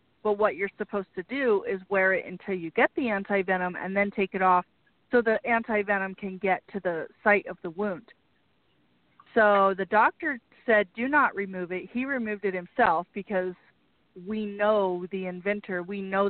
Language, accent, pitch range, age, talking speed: English, American, 185-225 Hz, 40-59, 180 wpm